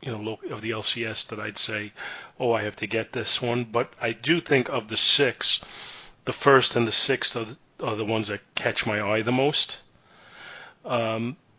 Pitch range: 110-130 Hz